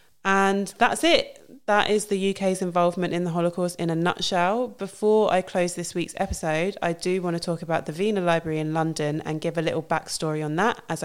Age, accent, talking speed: 20-39, British, 210 wpm